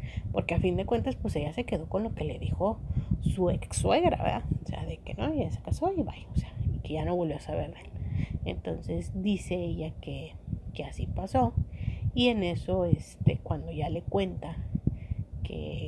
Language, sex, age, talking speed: Spanish, female, 30-49, 205 wpm